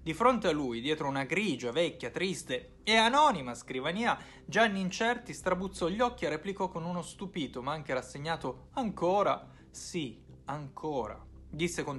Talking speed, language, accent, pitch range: 150 wpm, Italian, native, 135-195 Hz